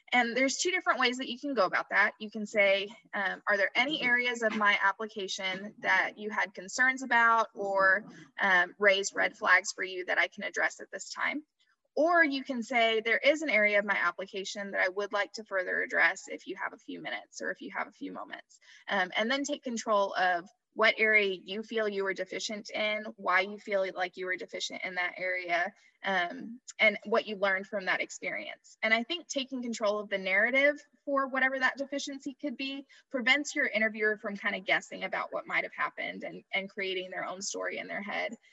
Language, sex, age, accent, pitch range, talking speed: English, female, 20-39, American, 195-255 Hz, 215 wpm